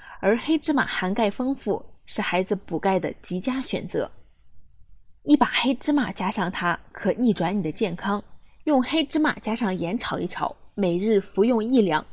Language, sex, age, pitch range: Chinese, female, 20-39, 190-265 Hz